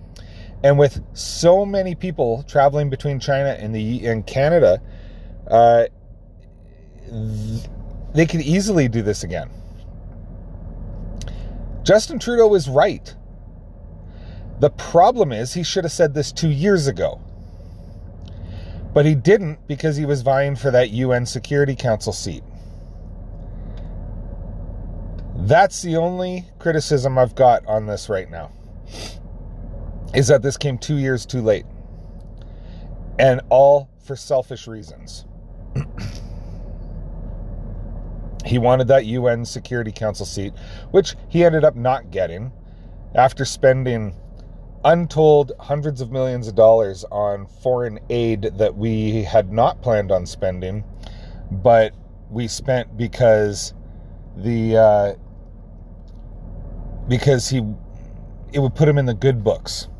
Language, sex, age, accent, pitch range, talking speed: English, male, 30-49, American, 95-135 Hz, 120 wpm